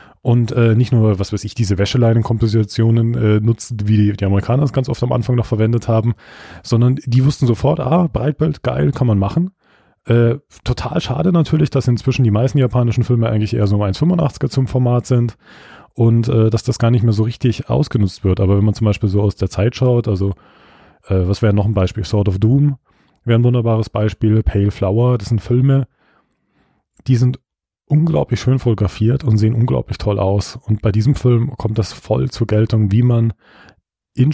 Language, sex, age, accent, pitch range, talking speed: German, male, 20-39, German, 105-125 Hz, 195 wpm